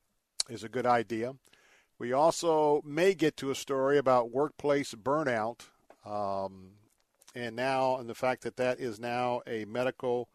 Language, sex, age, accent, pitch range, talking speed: English, male, 50-69, American, 115-135 Hz, 150 wpm